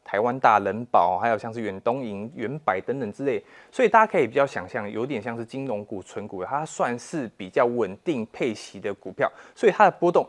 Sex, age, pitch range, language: male, 20-39, 115-155 Hz, Chinese